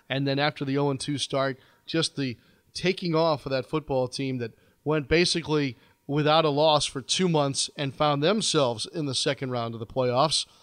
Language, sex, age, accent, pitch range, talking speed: English, male, 40-59, American, 135-160 Hz, 185 wpm